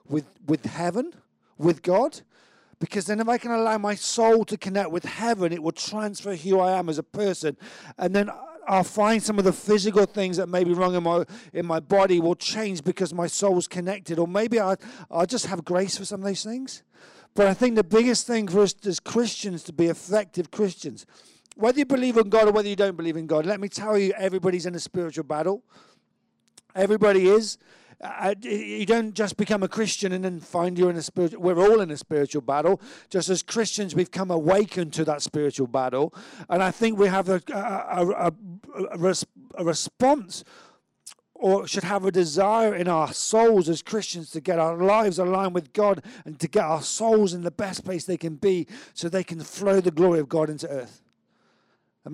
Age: 50-69